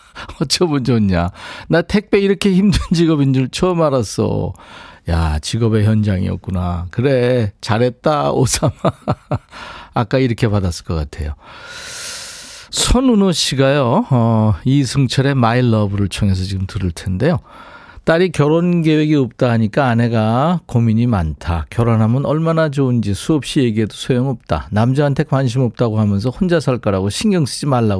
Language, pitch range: Korean, 105-150 Hz